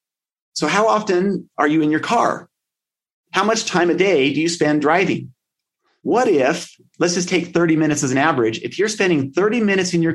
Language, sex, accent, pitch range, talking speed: English, male, American, 150-195 Hz, 200 wpm